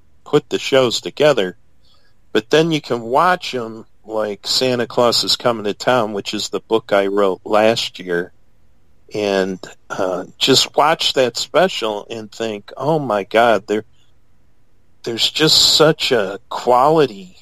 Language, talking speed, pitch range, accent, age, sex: English, 145 wpm, 95-120 Hz, American, 50-69, male